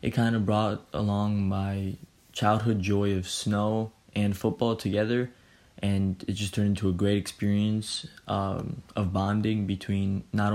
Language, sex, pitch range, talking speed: English, male, 100-110 Hz, 150 wpm